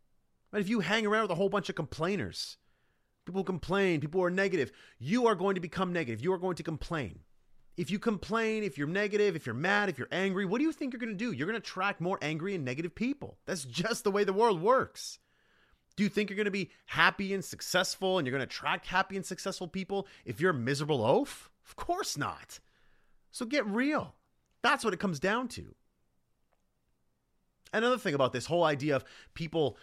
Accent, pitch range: American, 160-205 Hz